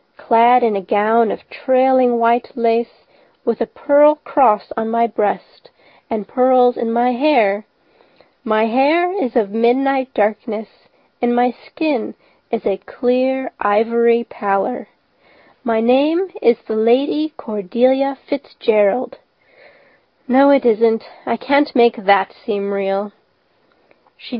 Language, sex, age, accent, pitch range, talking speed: English, female, 30-49, American, 220-265 Hz, 125 wpm